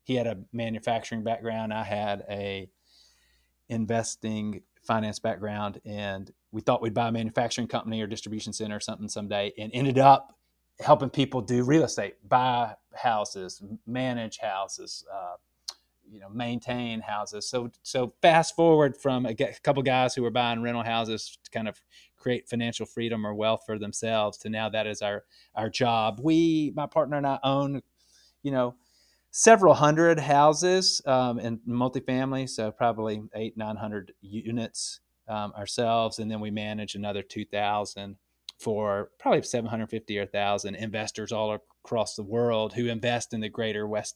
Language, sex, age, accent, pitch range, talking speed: English, male, 30-49, American, 105-125 Hz, 155 wpm